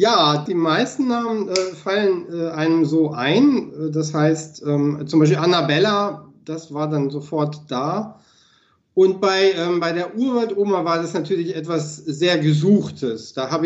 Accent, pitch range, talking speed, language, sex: German, 145-175 Hz, 155 wpm, German, male